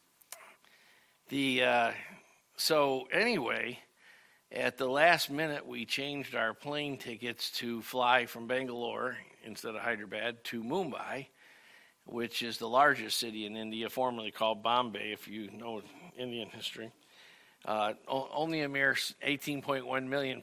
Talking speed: 125 wpm